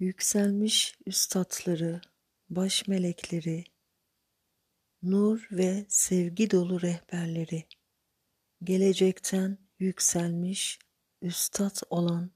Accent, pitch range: native, 170-190 Hz